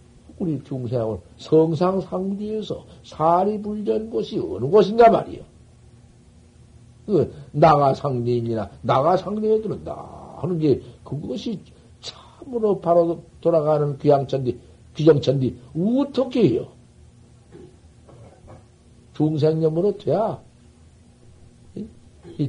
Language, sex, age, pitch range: Korean, male, 60-79, 135-185 Hz